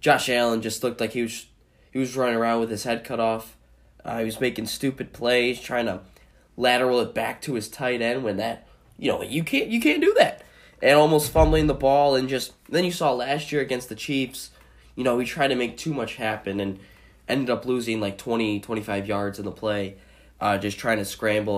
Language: English